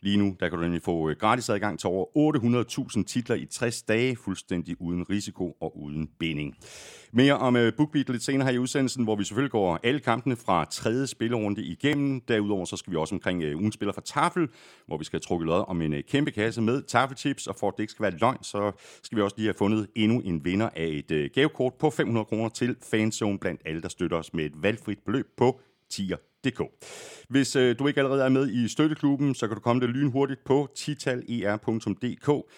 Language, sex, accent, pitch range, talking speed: Danish, male, native, 100-140 Hz, 210 wpm